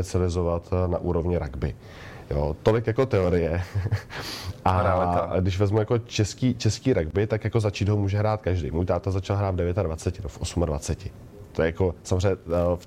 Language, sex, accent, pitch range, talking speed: Czech, male, native, 85-100 Hz, 170 wpm